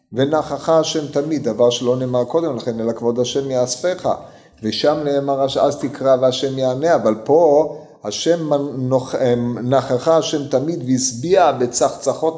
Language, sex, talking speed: Hebrew, male, 125 wpm